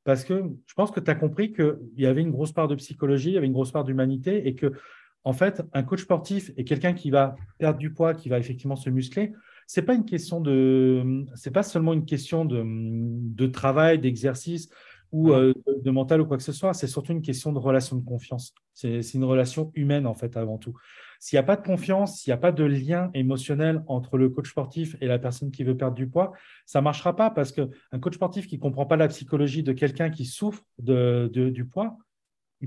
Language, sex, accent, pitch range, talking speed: French, male, French, 130-165 Hz, 235 wpm